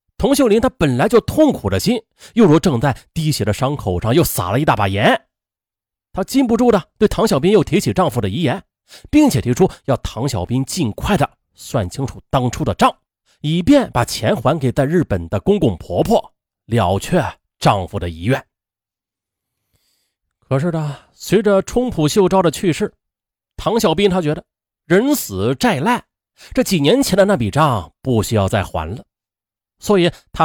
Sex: male